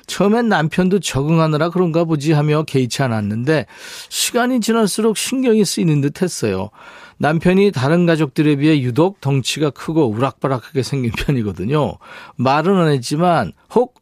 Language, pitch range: Korean, 125-170 Hz